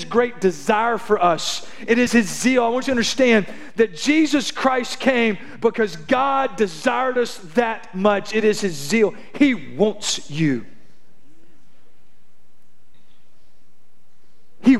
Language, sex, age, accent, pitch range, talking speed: English, male, 40-59, American, 150-230 Hz, 125 wpm